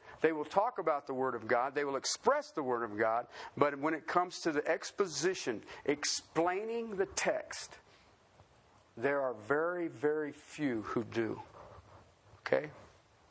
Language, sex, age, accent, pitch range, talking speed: English, male, 50-69, American, 120-175 Hz, 150 wpm